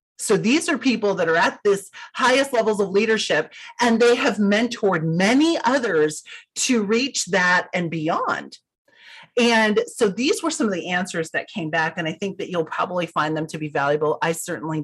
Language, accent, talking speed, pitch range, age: English, American, 190 wpm, 175-240 Hz, 30-49